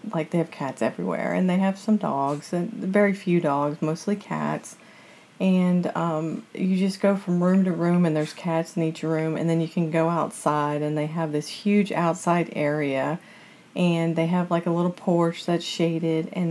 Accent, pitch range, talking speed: American, 160-200 Hz, 195 wpm